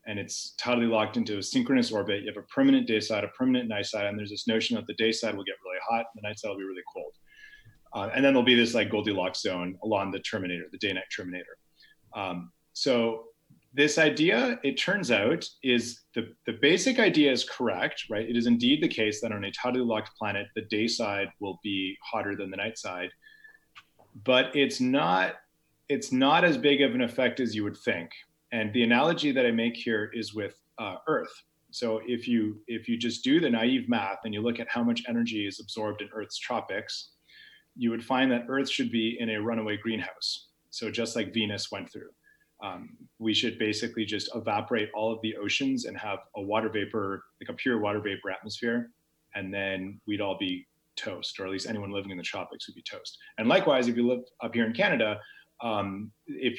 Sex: male